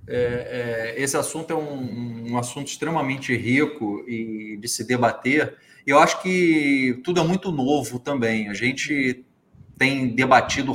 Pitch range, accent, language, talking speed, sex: 135-215 Hz, Brazilian, Portuguese, 150 wpm, male